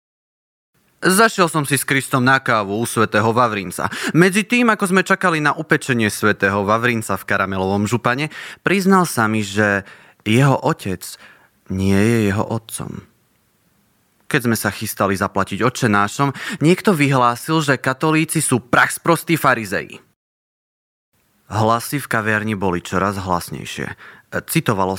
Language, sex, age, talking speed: Slovak, male, 20-39, 125 wpm